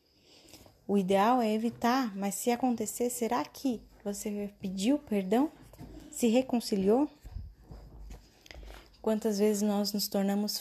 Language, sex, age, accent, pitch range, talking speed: Portuguese, female, 10-29, Brazilian, 190-220 Hz, 105 wpm